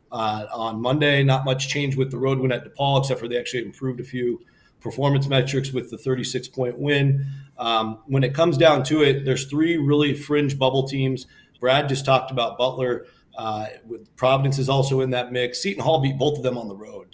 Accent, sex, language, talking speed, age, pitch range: American, male, English, 205 wpm, 40-59, 125-140 Hz